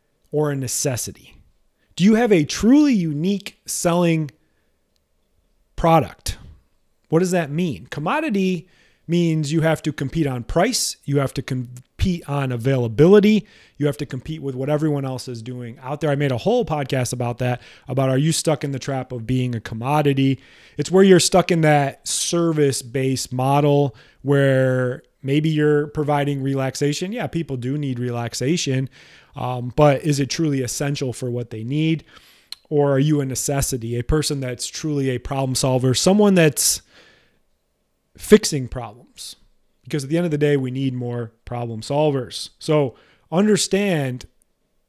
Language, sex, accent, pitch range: English, male, American, 125-155 Hz